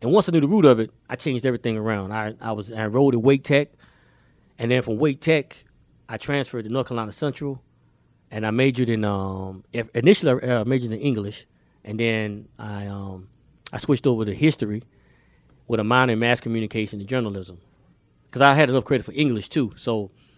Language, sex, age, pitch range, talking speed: English, male, 20-39, 105-130 Hz, 195 wpm